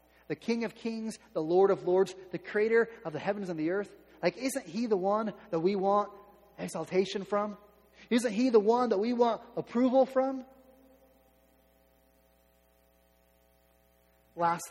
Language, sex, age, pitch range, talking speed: English, male, 30-49, 140-220 Hz, 145 wpm